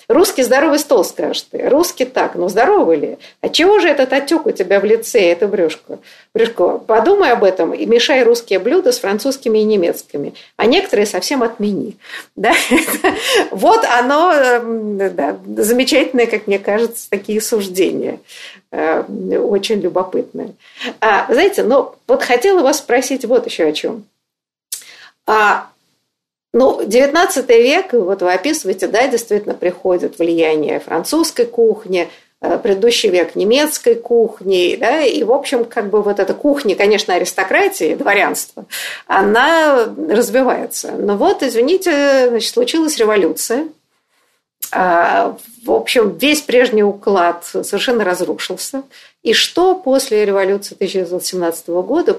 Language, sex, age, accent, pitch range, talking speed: Russian, female, 50-69, native, 205-320 Hz, 125 wpm